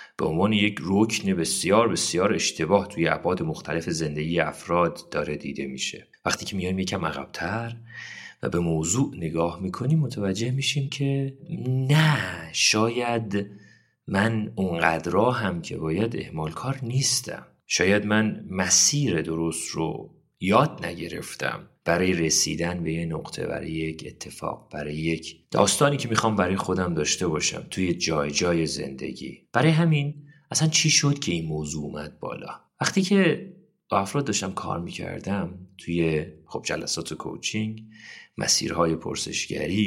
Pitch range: 85-135 Hz